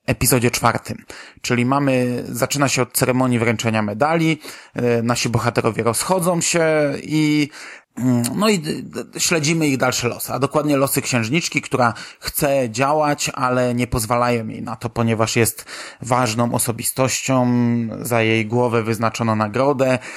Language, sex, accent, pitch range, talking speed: Polish, male, native, 120-135 Hz, 130 wpm